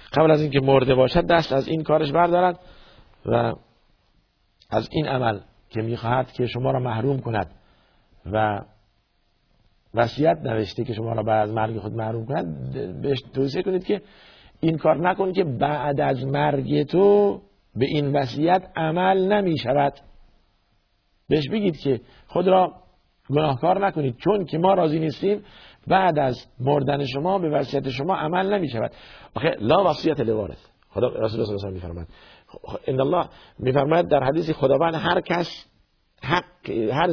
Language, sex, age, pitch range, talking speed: Persian, male, 50-69, 115-165 Hz, 140 wpm